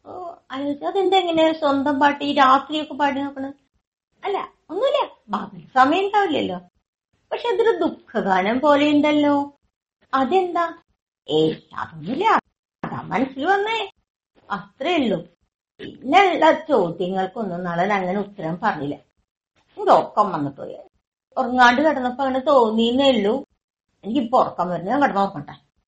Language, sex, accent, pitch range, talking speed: Malayalam, female, native, 185-280 Hz, 95 wpm